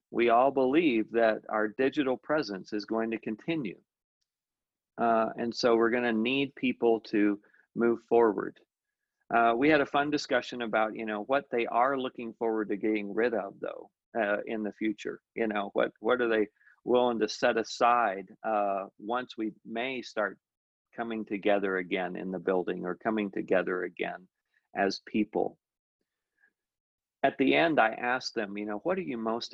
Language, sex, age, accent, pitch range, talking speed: English, male, 50-69, American, 105-125 Hz, 170 wpm